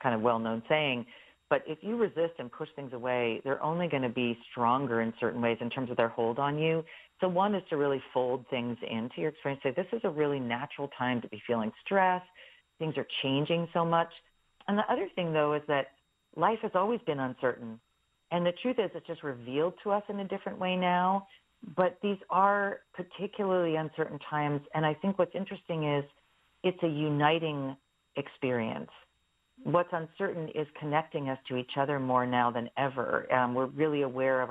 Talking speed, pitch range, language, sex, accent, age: 195 wpm, 130-180 Hz, English, female, American, 40-59